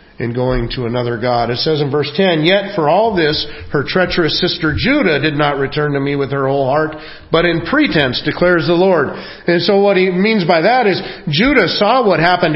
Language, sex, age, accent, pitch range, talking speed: English, male, 40-59, American, 150-225 Hz, 215 wpm